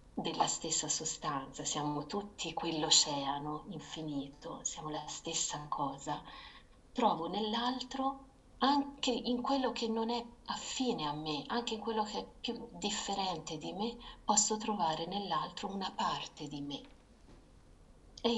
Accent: native